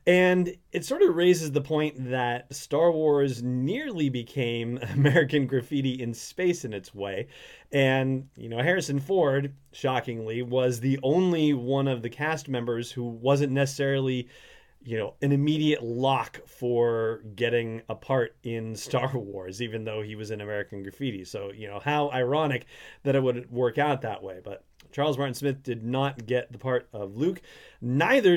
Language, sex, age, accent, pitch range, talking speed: English, male, 30-49, American, 120-145 Hz, 165 wpm